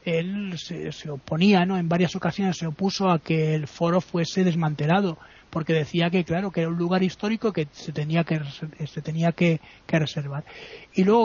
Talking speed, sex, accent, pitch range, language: 190 wpm, male, Spanish, 155-180 Hz, Spanish